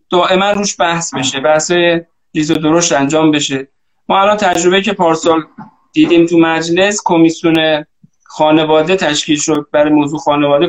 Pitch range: 150-185 Hz